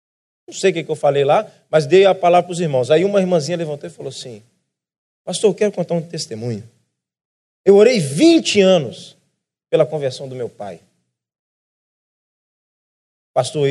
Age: 20-39